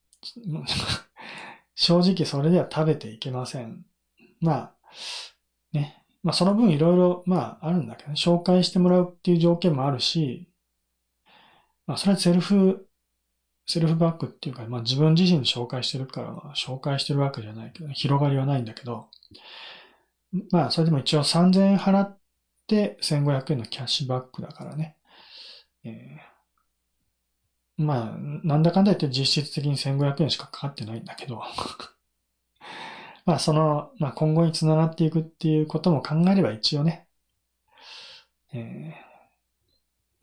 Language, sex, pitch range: Japanese, male, 130-170 Hz